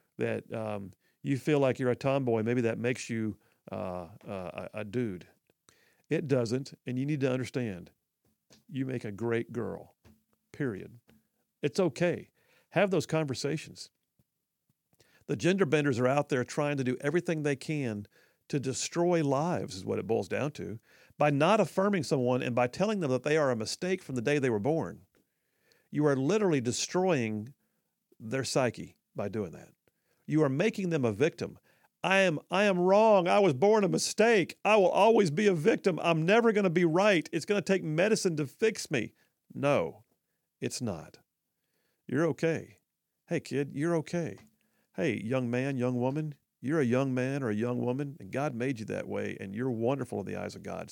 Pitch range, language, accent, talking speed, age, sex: 125-170 Hz, English, American, 185 wpm, 50-69, male